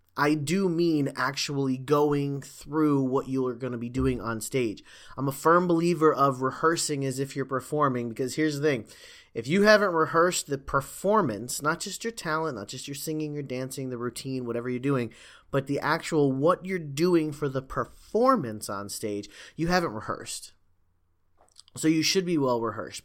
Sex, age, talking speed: male, 30-49, 180 wpm